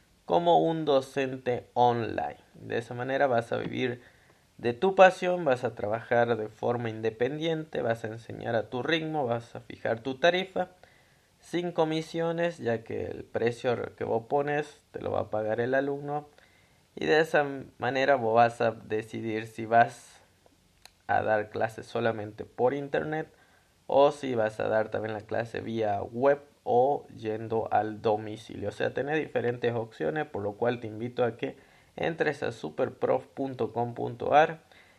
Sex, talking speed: male, 155 wpm